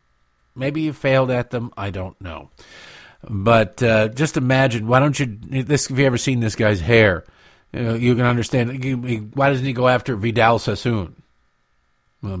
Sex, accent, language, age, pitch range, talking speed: male, American, English, 50-69, 100-155 Hz, 185 wpm